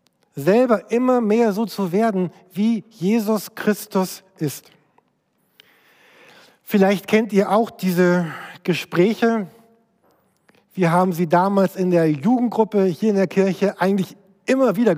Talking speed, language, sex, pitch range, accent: 120 wpm, German, male, 170-210 Hz, German